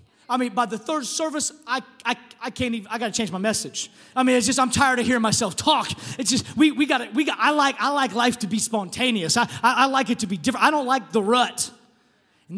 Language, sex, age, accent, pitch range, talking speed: English, male, 30-49, American, 160-235 Hz, 260 wpm